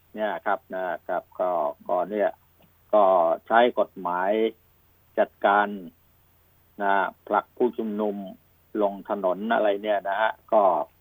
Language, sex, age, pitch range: Thai, male, 60-79, 100-125 Hz